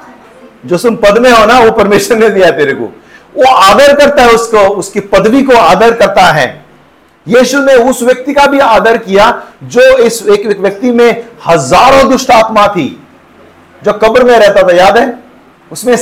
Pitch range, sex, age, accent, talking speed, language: 160-250 Hz, male, 50-69, native, 170 wpm, Hindi